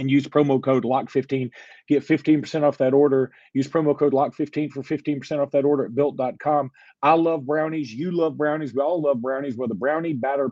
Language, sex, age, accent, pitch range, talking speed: English, male, 40-59, American, 125-150 Hz, 200 wpm